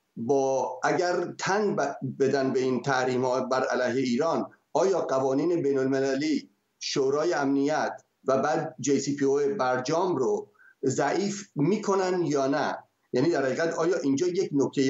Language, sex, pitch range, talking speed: Persian, male, 130-190 Hz, 135 wpm